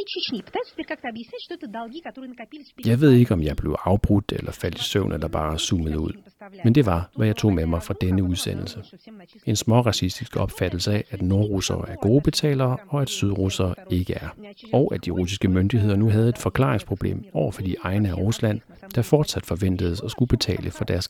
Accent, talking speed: native, 180 wpm